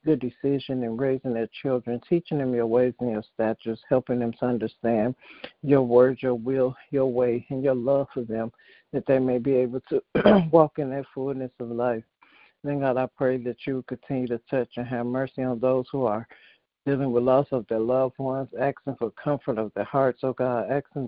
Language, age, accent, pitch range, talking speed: English, 60-79, American, 120-135 Hz, 205 wpm